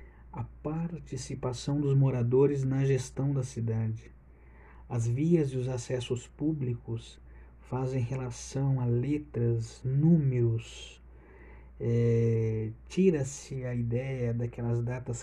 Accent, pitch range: Brazilian, 120-145 Hz